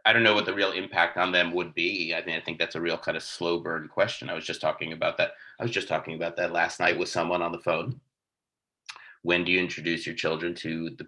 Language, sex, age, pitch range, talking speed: English, male, 30-49, 85-90 Hz, 270 wpm